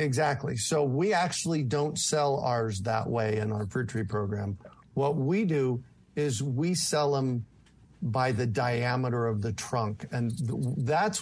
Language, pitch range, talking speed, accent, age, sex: English, 120-150 Hz, 155 wpm, American, 50-69, male